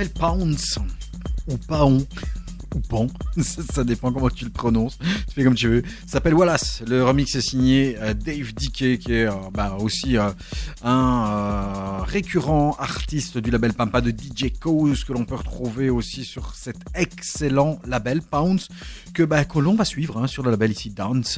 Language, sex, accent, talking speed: French, male, French, 180 wpm